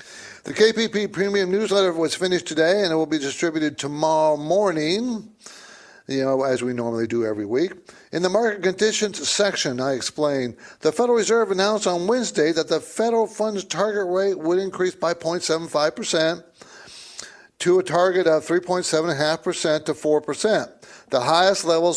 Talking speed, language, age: 150 wpm, English, 60-79